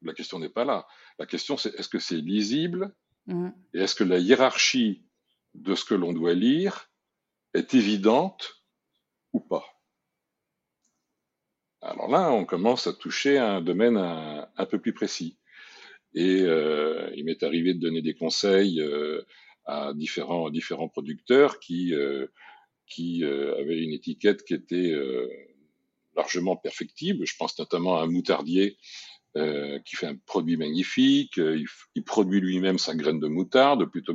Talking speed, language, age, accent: 160 wpm, French, 50-69, French